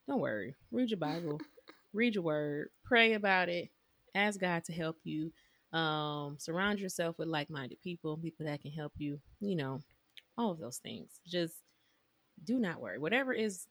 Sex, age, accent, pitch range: female, 20-39, American, 160-230 Hz